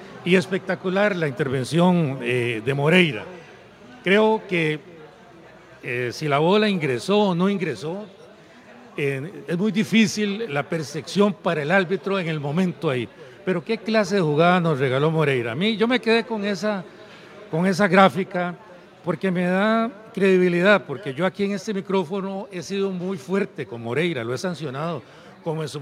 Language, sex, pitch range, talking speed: Spanish, male, 160-200 Hz, 165 wpm